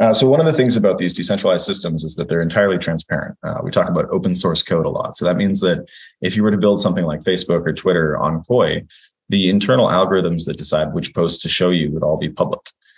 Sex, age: male, 30-49